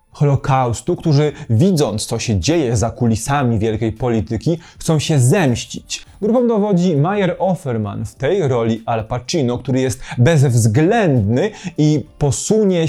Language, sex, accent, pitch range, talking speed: Polish, male, native, 115-155 Hz, 125 wpm